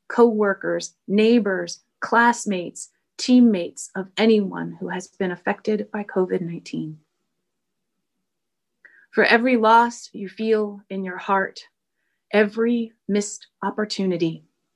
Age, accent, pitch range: 30-49, American, 185-220 Hz